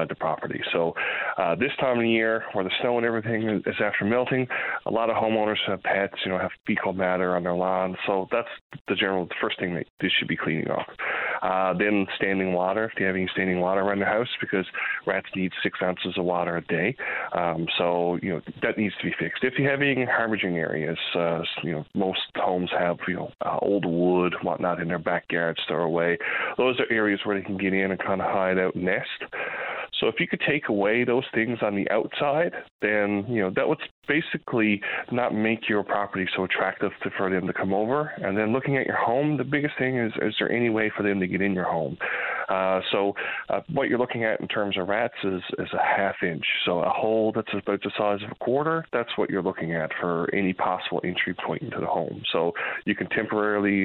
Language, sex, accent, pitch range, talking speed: English, male, American, 90-110 Hz, 230 wpm